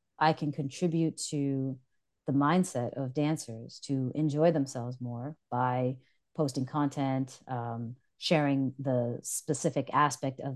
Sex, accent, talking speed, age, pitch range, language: female, American, 120 wpm, 30-49, 130-155 Hz, English